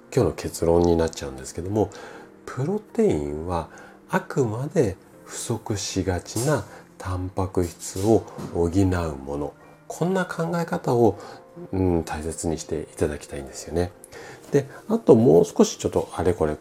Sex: male